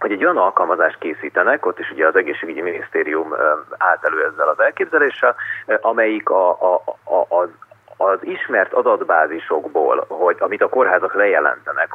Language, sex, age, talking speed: Hungarian, male, 30-49, 140 wpm